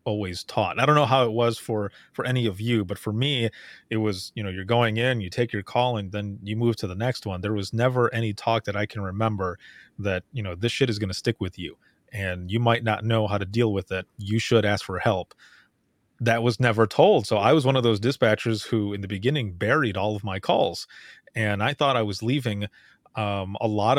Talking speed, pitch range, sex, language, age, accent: 250 wpm, 105-120 Hz, male, English, 30-49, American